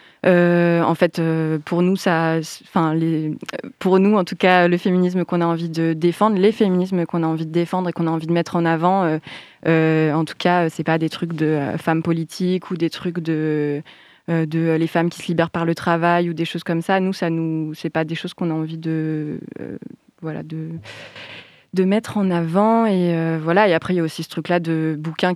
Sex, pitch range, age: female, 160-180 Hz, 20-39